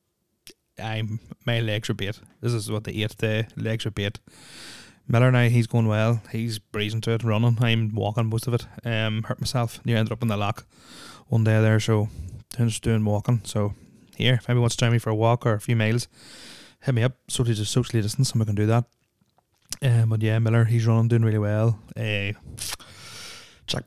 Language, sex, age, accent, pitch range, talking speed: English, male, 20-39, Irish, 105-120 Hz, 215 wpm